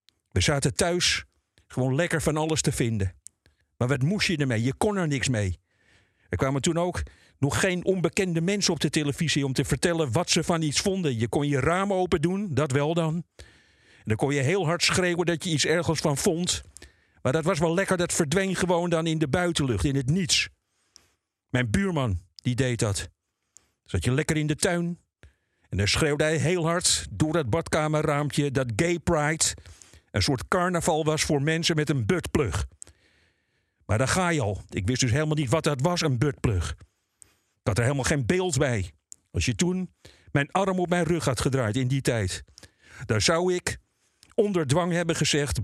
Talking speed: 195 wpm